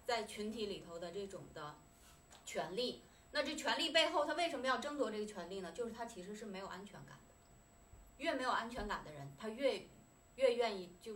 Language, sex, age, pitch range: Chinese, female, 20-39, 195-285 Hz